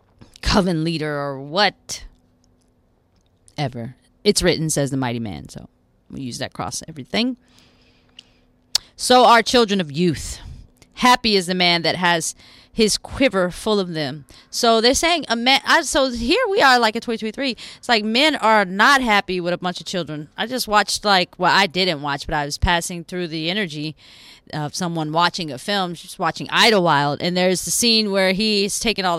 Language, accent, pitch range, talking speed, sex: English, American, 145-205 Hz, 185 wpm, female